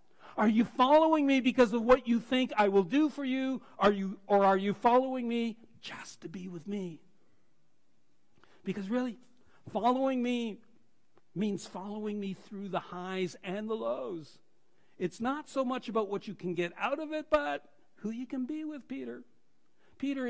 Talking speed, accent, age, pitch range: 175 wpm, American, 60-79, 180-235 Hz